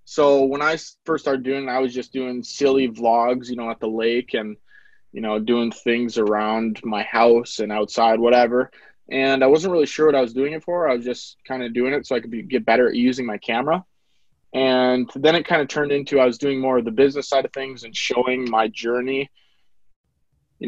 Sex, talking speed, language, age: male, 225 wpm, English, 20-39